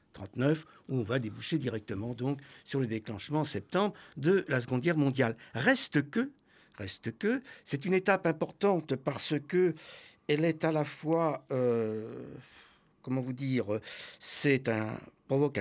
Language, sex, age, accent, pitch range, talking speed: French, male, 60-79, French, 115-165 Hz, 140 wpm